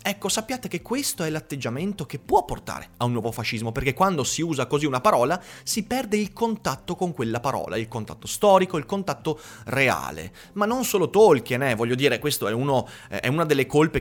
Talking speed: 205 wpm